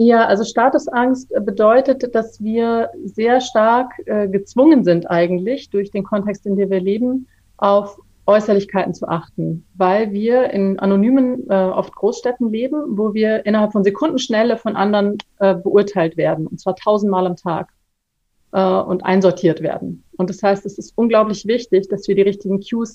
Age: 30-49